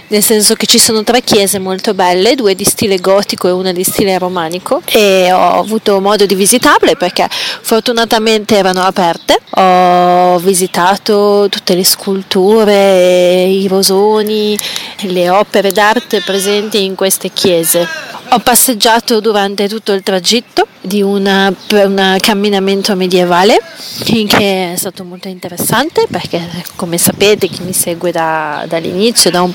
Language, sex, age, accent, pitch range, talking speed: Italian, female, 30-49, native, 185-220 Hz, 135 wpm